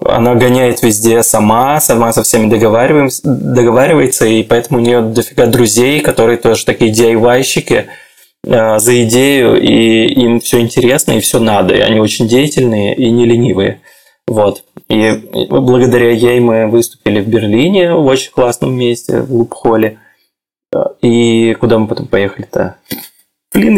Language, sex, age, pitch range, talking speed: Russian, male, 20-39, 115-130 Hz, 135 wpm